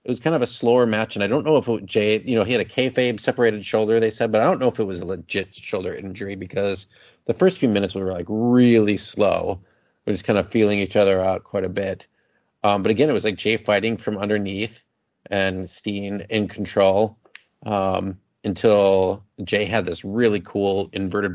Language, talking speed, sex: English, 215 wpm, male